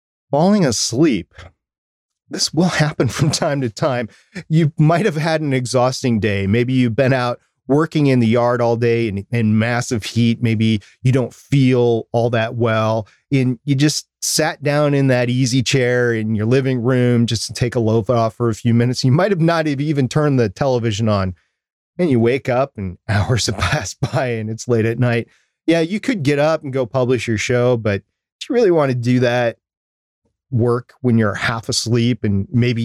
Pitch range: 115-140 Hz